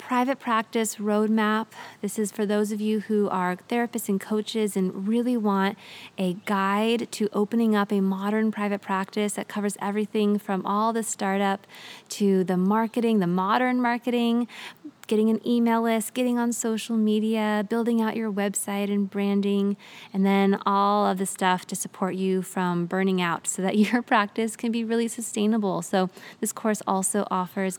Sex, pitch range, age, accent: female, 195-230 Hz, 20-39, American